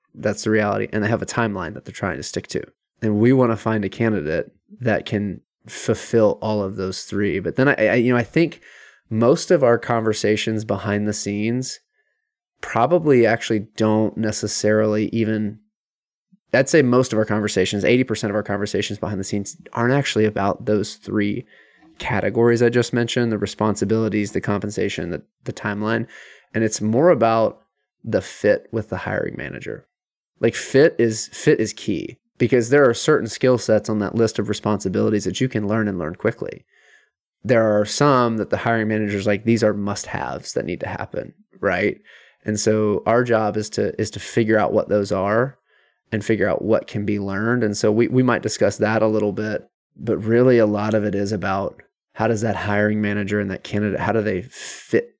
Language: English